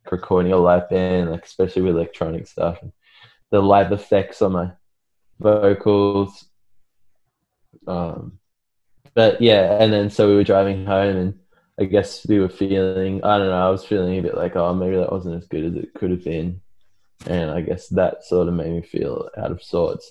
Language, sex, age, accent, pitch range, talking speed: English, male, 20-39, Australian, 90-105 Hz, 190 wpm